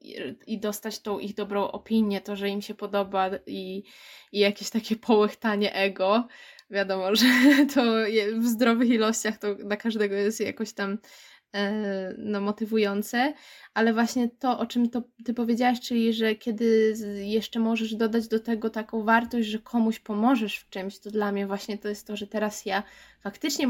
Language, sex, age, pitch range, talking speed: Polish, female, 20-39, 205-230 Hz, 160 wpm